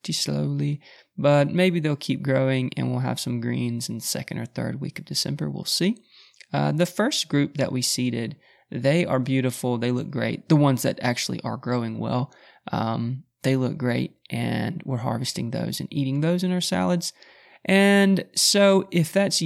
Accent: American